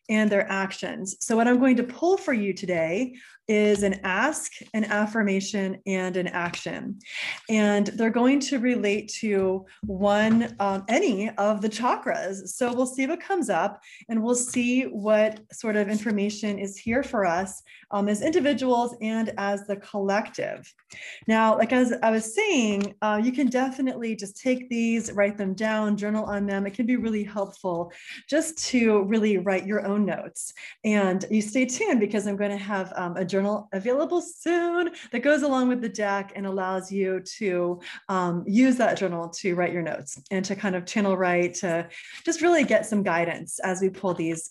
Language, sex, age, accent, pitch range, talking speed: English, female, 20-39, American, 195-245 Hz, 180 wpm